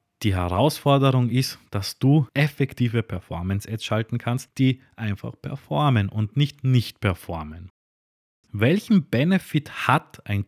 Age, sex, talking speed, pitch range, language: 20-39, male, 110 wpm, 105-150 Hz, German